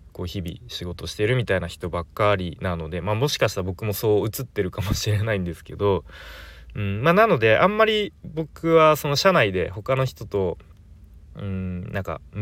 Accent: native